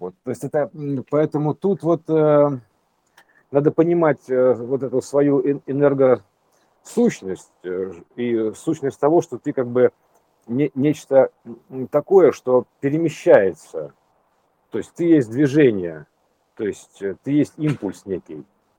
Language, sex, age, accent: Russian, male, 50-69, native